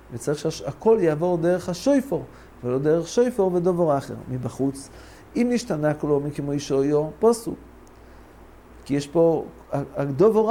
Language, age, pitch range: English, 50-69, 145-195 Hz